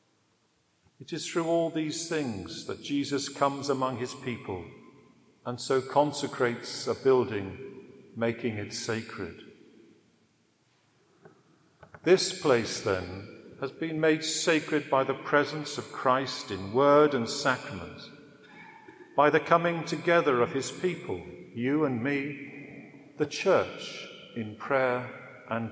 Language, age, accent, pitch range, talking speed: English, 50-69, British, 130-155 Hz, 120 wpm